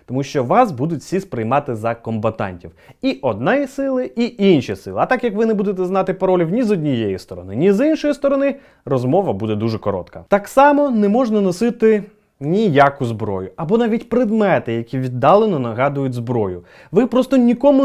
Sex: male